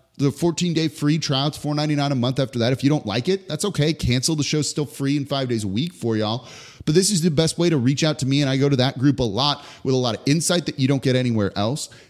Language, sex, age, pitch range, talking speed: English, male, 30-49, 125-165 Hz, 290 wpm